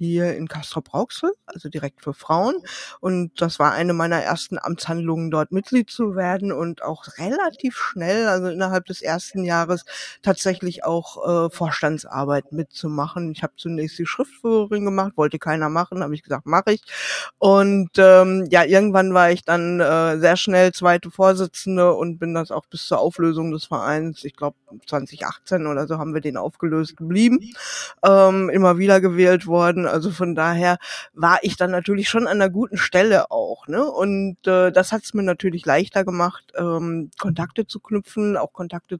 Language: German